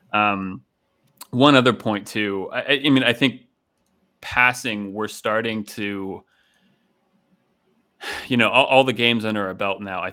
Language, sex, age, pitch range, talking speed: English, male, 30-49, 95-120 Hz, 155 wpm